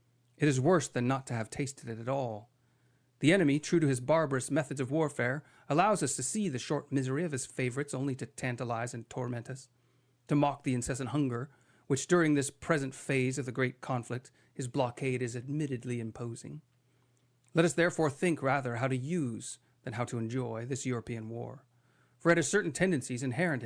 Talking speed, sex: 195 wpm, male